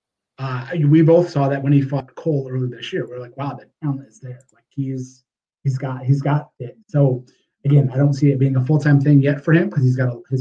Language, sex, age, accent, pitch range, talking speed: English, male, 30-49, American, 125-140 Hz, 265 wpm